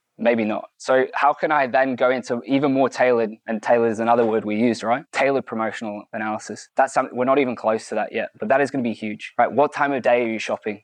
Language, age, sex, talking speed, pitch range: English, 20-39, male, 260 wpm, 115-140 Hz